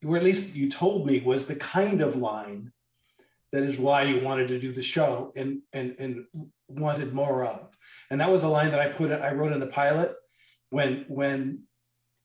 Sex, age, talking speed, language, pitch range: male, 40-59, 200 wpm, English, 130-180 Hz